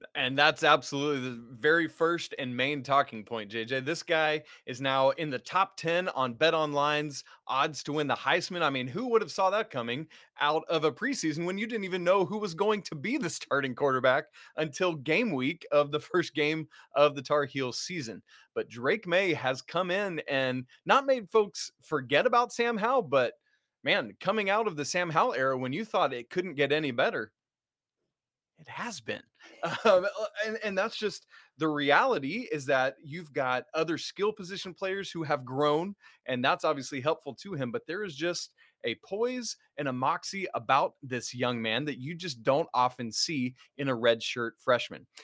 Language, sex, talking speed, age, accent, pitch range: English, male, 195 wpm, 20-39, American, 135-185 Hz